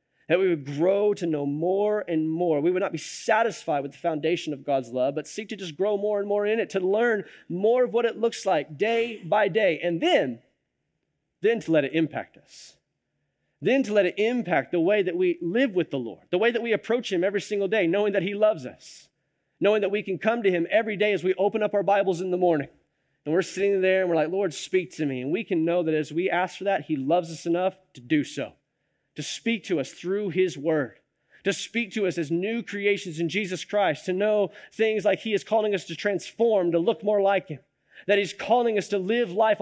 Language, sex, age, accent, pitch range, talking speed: English, male, 30-49, American, 165-220 Hz, 245 wpm